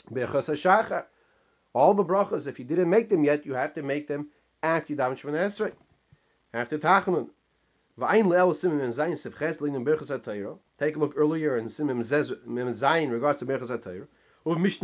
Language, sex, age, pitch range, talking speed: English, male, 30-49, 145-180 Hz, 95 wpm